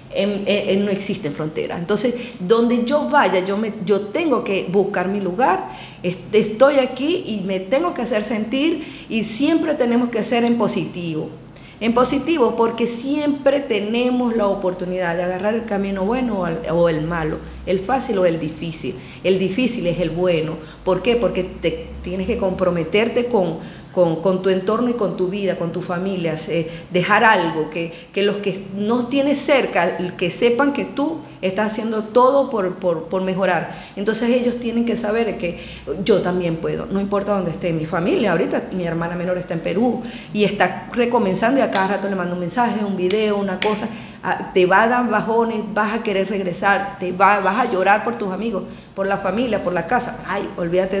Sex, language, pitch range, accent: female, Spanish, 180-235 Hz, American